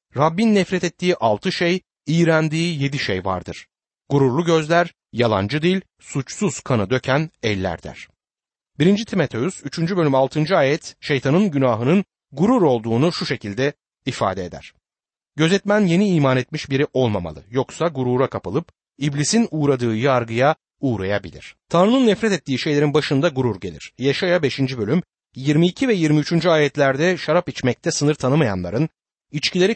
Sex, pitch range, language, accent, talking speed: male, 125-170 Hz, Turkish, native, 130 wpm